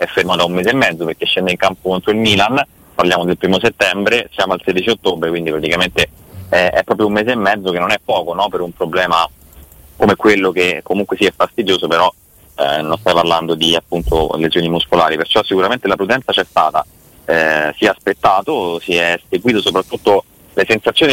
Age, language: 30-49, Italian